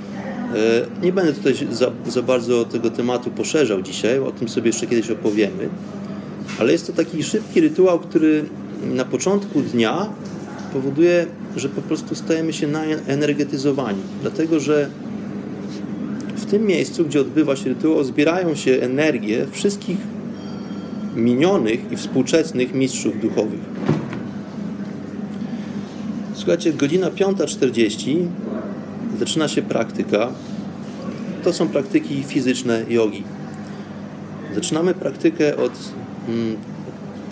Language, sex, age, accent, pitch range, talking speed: Polish, male, 30-49, native, 125-200 Hz, 105 wpm